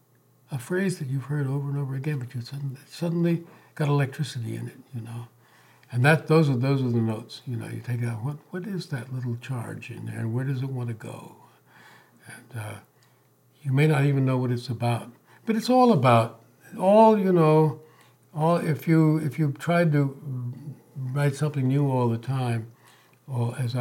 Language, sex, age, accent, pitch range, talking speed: English, male, 60-79, American, 120-155 Hz, 200 wpm